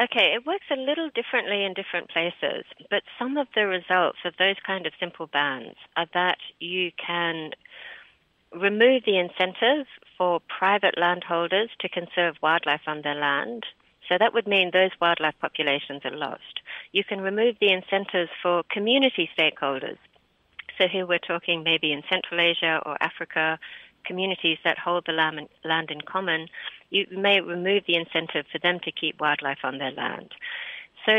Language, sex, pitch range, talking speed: English, female, 160-195 Hz, 160 wpm